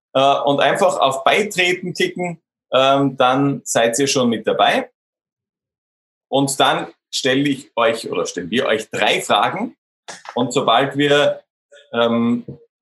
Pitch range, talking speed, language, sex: 125-170 Hz, 120 wpm, German, male